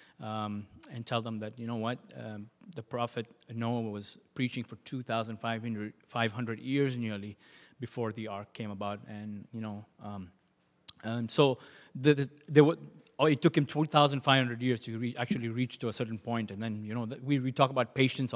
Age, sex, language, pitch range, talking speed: 30-49, male, English, 115-135 Hz, 165 wpm